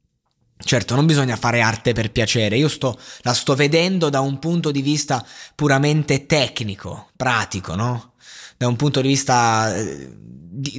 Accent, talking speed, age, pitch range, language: native, 155 wpm, 20-39, 115-150 Hz, Italian